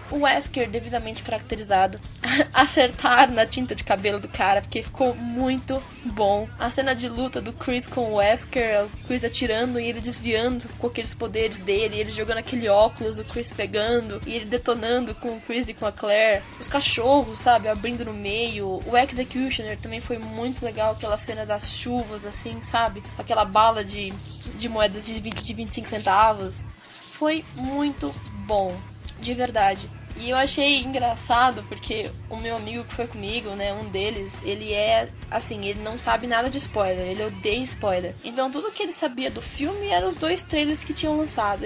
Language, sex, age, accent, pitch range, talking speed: Portuguese, female, 10-29, Brazilian, 210-265 Hz, 175 wpm